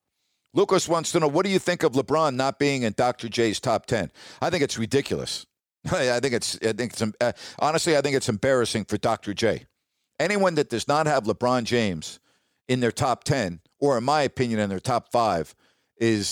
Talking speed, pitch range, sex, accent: 205 wpm, 110-150 Hz, male, American